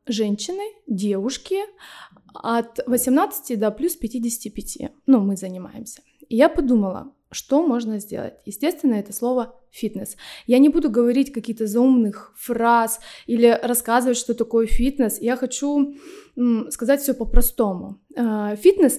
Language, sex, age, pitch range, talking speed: Russian, female, 20-39, 220-265 Hz, 120 wpm